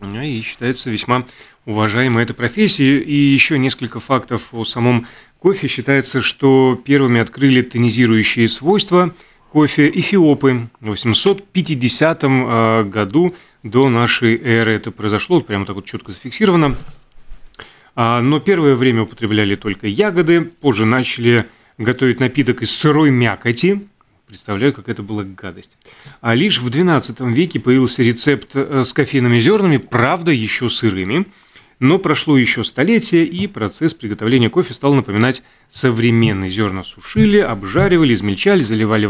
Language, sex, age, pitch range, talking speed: Russian, male, 30-49, 115-150 Hz, 125 wpm